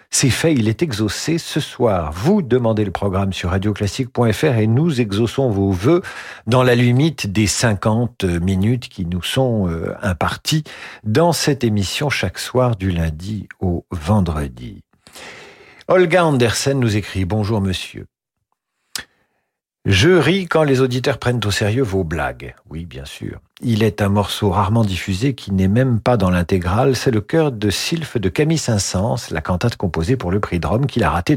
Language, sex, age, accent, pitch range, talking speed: French, male, 50-69, French, 95-130 Hz, 175 wpm